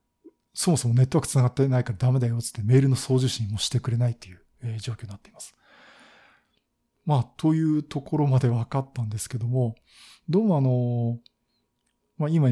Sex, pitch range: male, 120-155 Hz